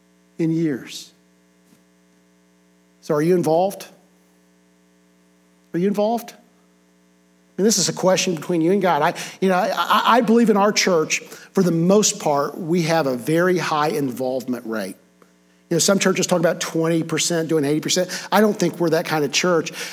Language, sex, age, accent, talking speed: English, male, 50-69, American, 170 wpm